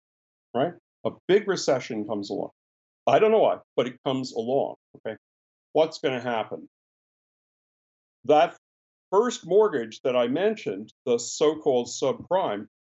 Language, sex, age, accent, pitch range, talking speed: English, male, 50-69, American, 115-165 Hz, 130 wpm